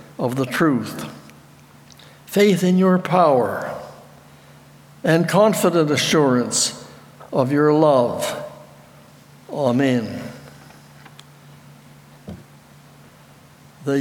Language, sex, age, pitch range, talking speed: English, male, 60-79, 140-170 Hz, 65 wpm